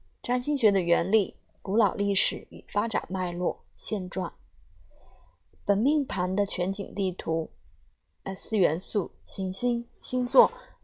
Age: 20-39